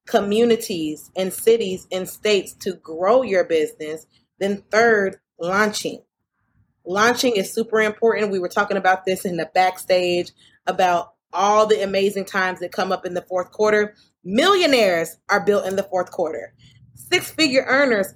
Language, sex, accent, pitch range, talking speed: English, female, American, 175-205 Hz, 150 wpm